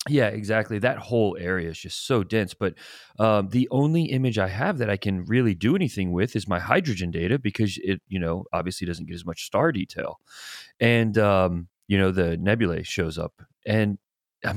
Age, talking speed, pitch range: 30-49, 200 wpm, 90-125 Hz